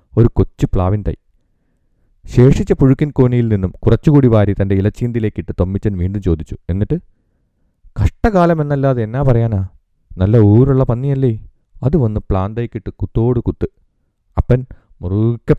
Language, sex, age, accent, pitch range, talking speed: Malayalam, male, 30-49, native, 95-120 Hz, 105 wpm